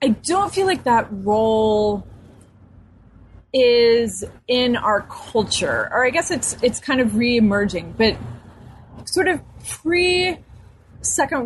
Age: 30-49